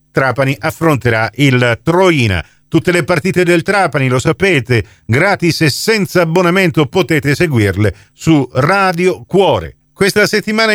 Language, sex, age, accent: Italian, male, 50-69, native